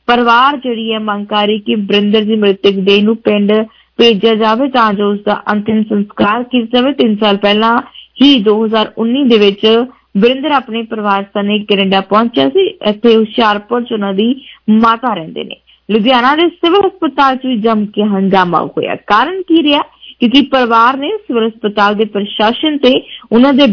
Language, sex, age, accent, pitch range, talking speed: English, female, 20-39, Indian, 205-255 Hz, 125 wpm